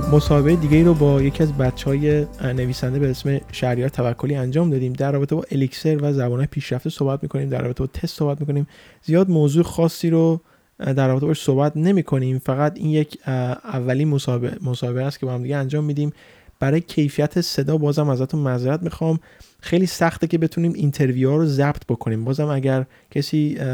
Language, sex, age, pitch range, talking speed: Persian, male, 20-39, 125-150 Hz, 175 wpm